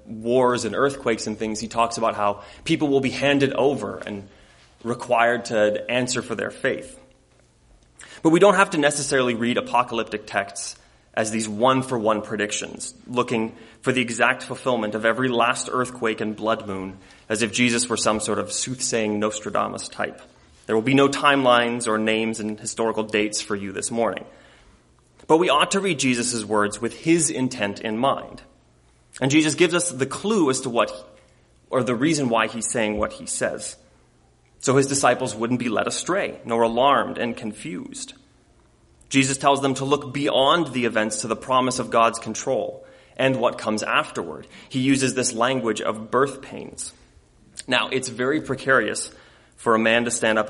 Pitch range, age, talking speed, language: 110-130 Hz, 30-49, 175 wpm, English